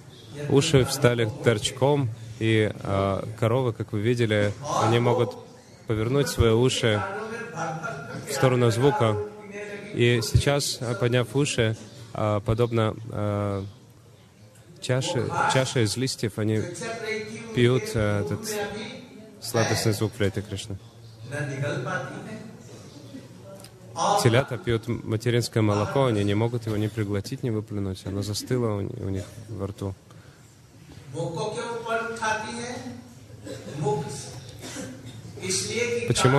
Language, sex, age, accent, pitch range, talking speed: Russian, male, 20-39, native, 110-135 Hz, 95 wpm